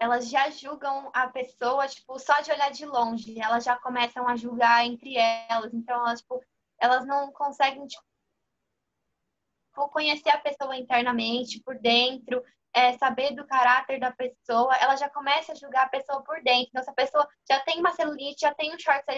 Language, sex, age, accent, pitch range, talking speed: Portuguese, female, 10-29, Brazilian, 250-310 Hz, 180 wpm